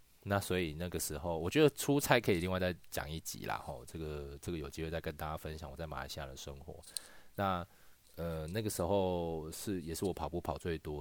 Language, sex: Chinese, male